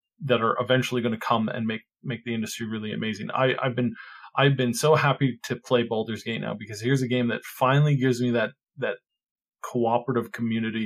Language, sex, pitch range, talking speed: English, male, 110-130 Hz, 205 wpm